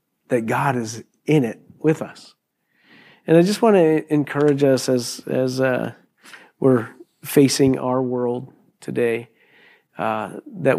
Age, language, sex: 40-59, English, male